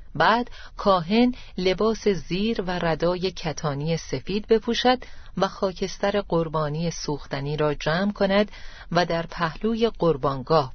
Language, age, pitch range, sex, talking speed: Persian, 40-59, 160-220 Hz, female, 110 wpm